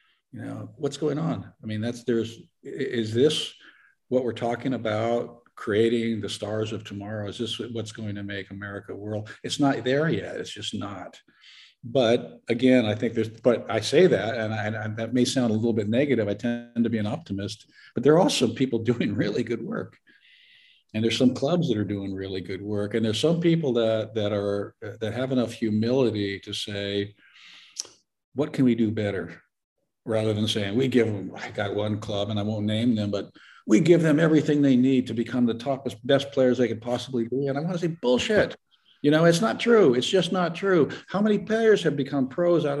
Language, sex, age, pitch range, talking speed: English, male, 50-69, 110-145 Hz, 210 wpm